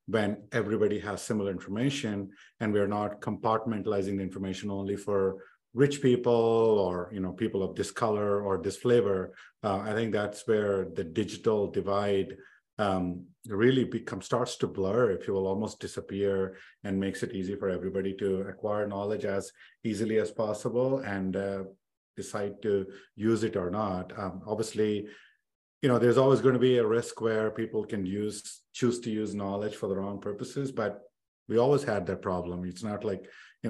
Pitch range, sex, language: 100-115 Hz, male, English